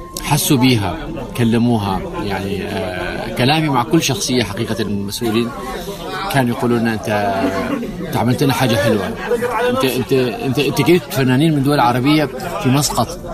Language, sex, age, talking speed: Arabic, male, 30-49, 140 wpm